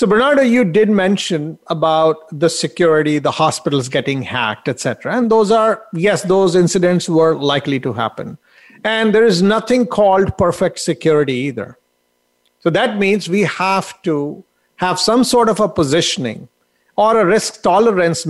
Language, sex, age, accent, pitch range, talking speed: English, male, 50-69, Indian, 145-205 Hz, 155 wpm